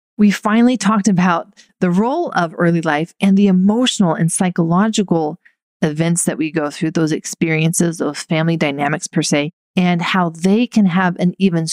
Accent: American